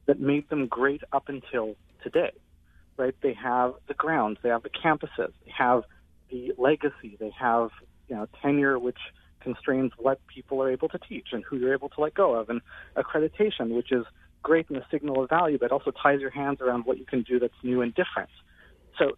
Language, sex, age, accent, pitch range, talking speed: English, male, 40-59, American, 115-155 Hz, 205 wpm